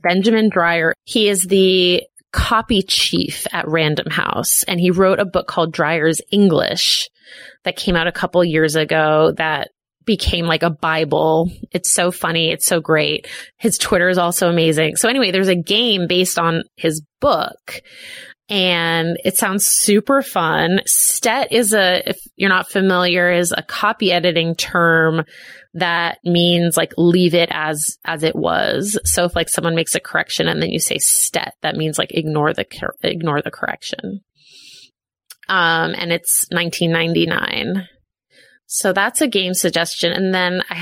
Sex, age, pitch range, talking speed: female, 20-39, 165-195 Hz, 160 wpm